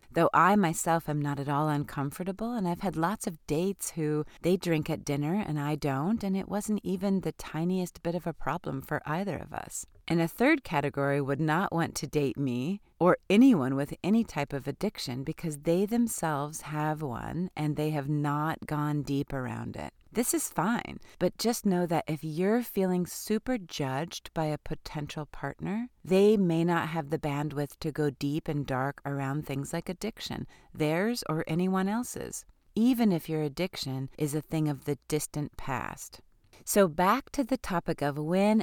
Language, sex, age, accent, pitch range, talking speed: English, female, 30-49, American, 145-185 Hz, 185 wpm